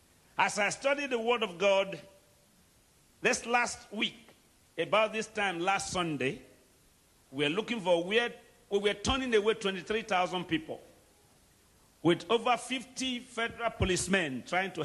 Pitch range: 175-245 Hz